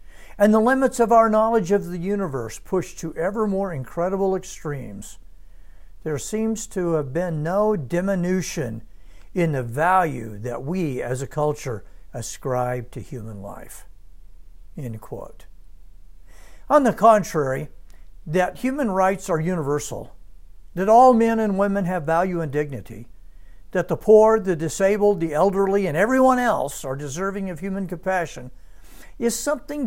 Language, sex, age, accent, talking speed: English, male, 60-79, American, 140 wpm